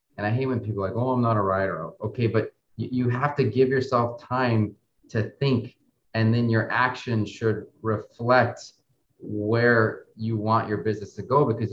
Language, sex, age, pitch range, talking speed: English, male, 30-49, 105-125 Hz, 190 wpm